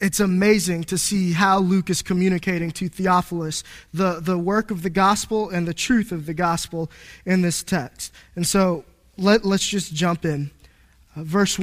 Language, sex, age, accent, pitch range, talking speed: English, male, 20-39, American, 175-215 Hz, 170 wpm